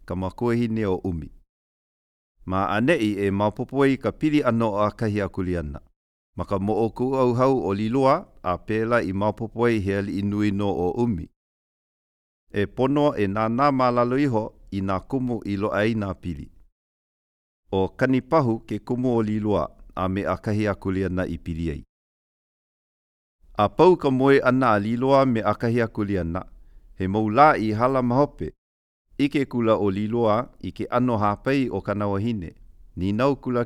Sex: male